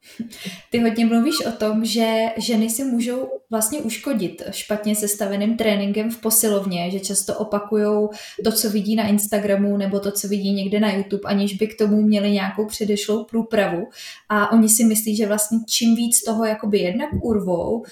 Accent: native